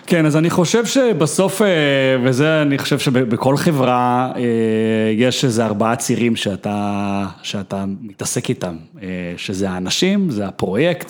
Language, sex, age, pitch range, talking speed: Hebrew, male, 30-49, 105-145 Hz, 120 wpm